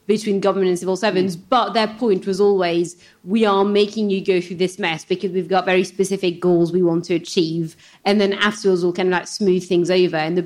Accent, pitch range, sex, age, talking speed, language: British, 170-195 Hz, female, 30-49, 230 wpm, English